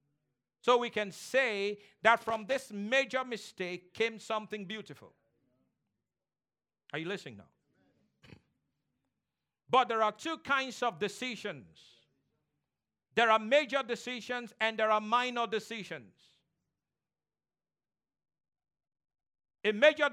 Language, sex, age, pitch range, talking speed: English, male, 50-69, 200-245 Hz, 100 wpm